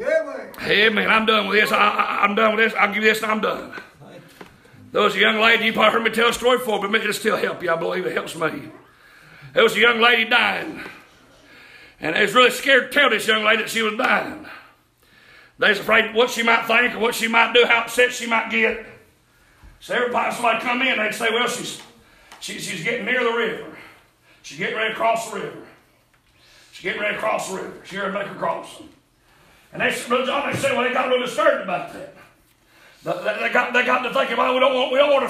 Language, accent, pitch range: English, American, 215-255 Hz